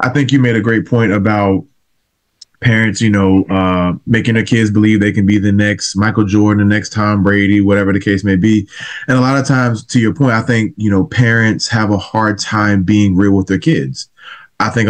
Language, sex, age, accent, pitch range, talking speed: English, male, 20-39, American, 105-130 Hz, 225 wpm